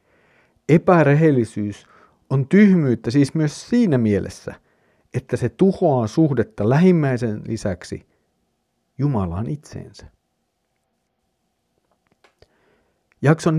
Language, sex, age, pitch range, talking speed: Finnish, male, 50-69, 115-160 Hz, 70 wpm